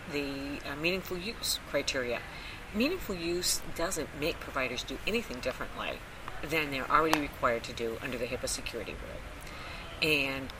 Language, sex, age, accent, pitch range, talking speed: English, female, 50-69, American, 130-170 Hz, 140 wpm